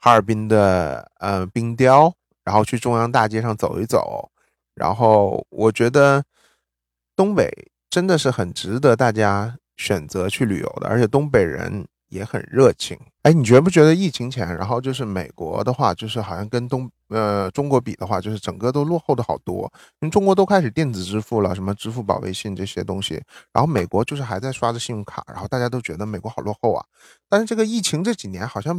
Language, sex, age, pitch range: Chinese, male, 30-49, 100-145 Hz